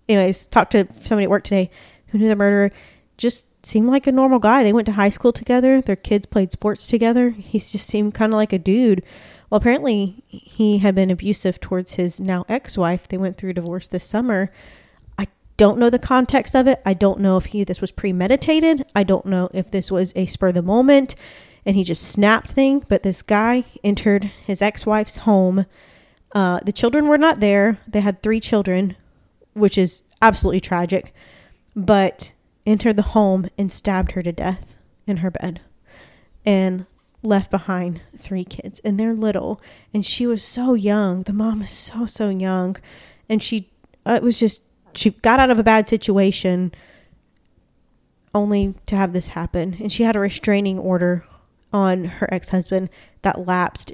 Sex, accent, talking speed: female, American, 185 wpm